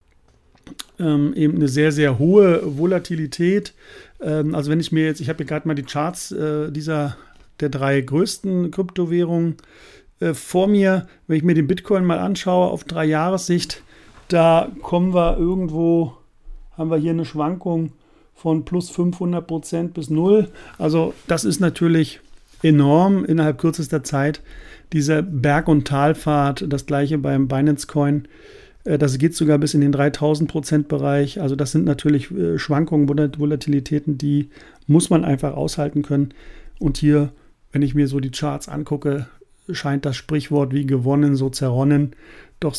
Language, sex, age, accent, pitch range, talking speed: German, male, 50-69, German, 140-165 Hz, 150 wpm